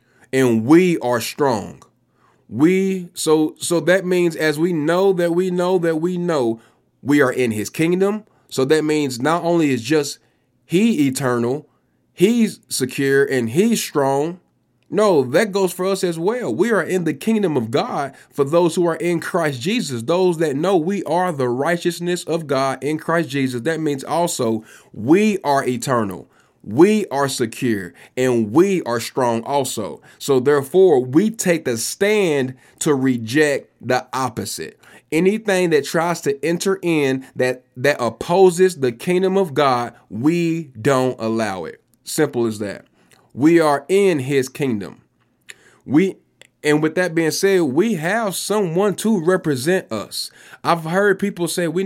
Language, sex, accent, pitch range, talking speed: English, male, American, 130-185 Hz, 155 wpm